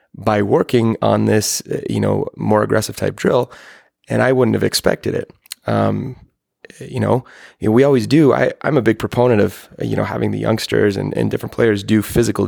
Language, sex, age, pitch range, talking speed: English, male, 20-39, 105-125 Hz, 185 wpm